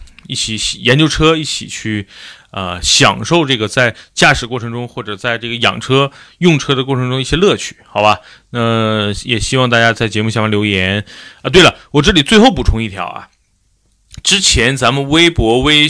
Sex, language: male, Chinese